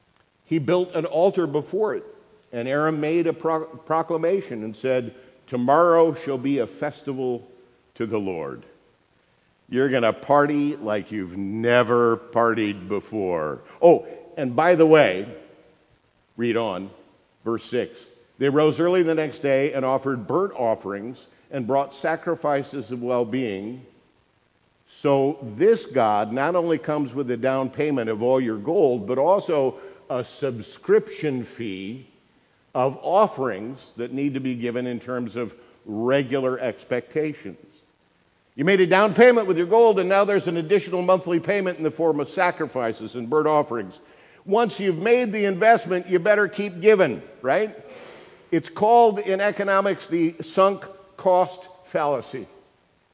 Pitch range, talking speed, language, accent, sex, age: 125-180 Hz, 140 wpm, English, American, male, 50-69